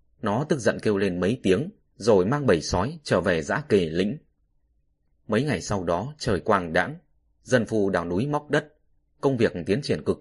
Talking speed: 200 wpm